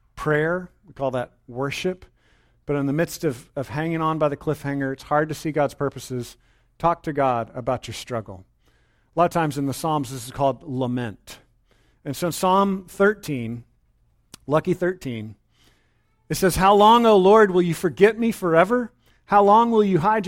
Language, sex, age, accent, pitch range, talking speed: English, male, 40-59, American, 130-180 Hz, 180 wpm